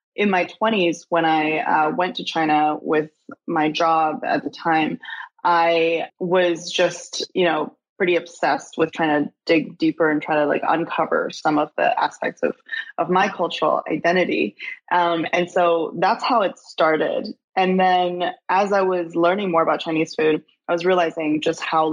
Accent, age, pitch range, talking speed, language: American, 20-39, 160-180 Hz, 170 wpm, English